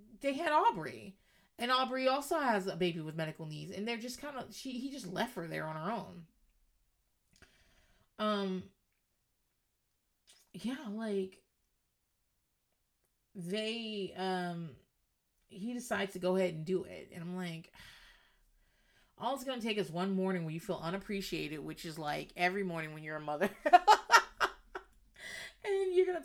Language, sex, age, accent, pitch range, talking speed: English, female, 30-49, American, 150-225 Hz, 150 wpm